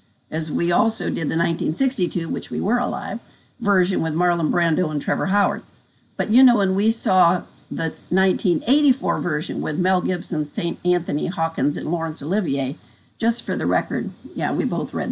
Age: 60-79